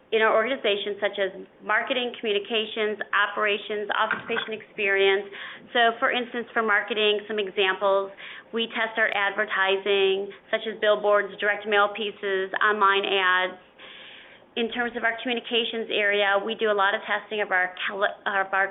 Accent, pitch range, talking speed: American, 195-220 Hz, 140 wpm